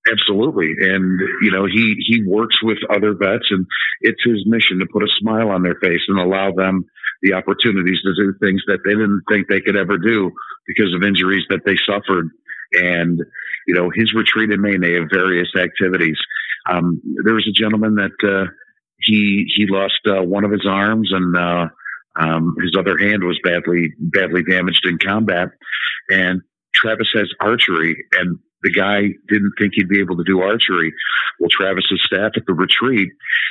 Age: 50-69